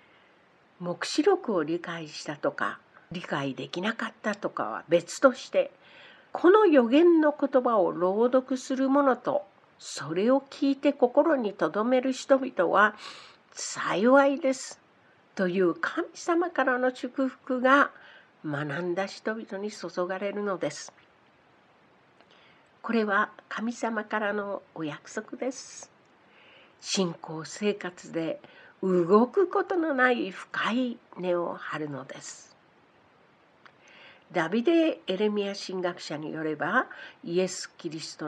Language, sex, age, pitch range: Japanese, female, 60-79, 180-270 Hz